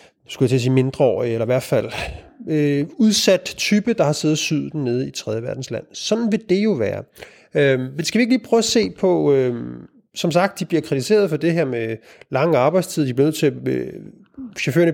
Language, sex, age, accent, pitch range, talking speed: Danish, male, 30-49, native, 135-190 Hz, 215 wpm